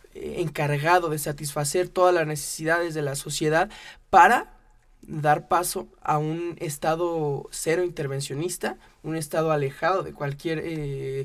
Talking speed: 125 wpm